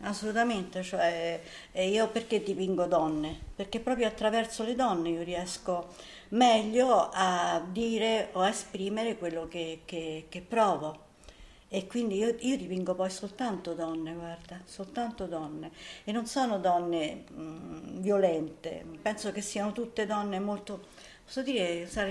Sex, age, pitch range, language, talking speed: female, 50-69, 185-225 Hz, Italian, 130 wpm